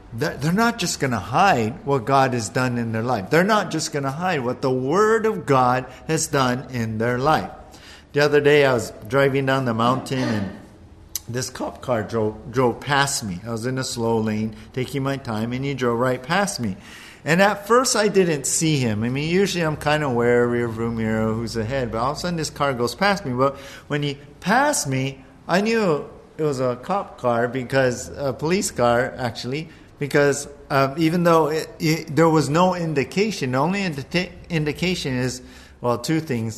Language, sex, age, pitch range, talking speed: English, male, 50-69, 120-155 Hz, 200 wpm